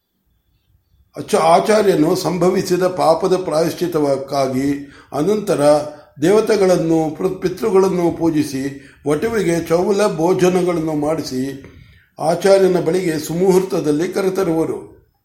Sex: male